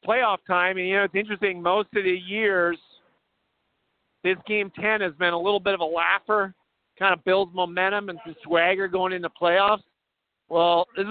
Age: 50-69